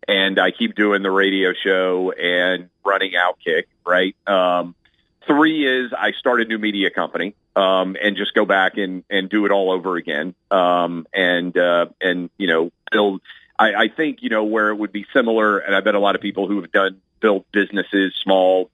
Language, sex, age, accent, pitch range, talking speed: English, male, 40-59, American, 90-105 Hz, 200 wpm